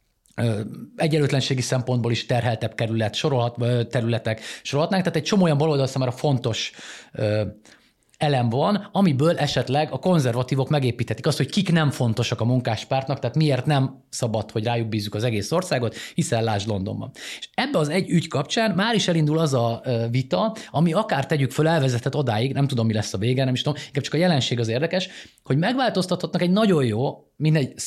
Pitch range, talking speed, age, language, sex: 115-155 Hz, 180 wpm, 30-49, Hungarian, male